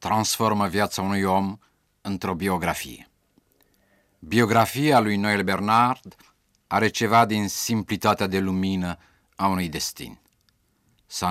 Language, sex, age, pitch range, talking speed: Romanian, male, 50-69, 95-110 Hz, 105 wpm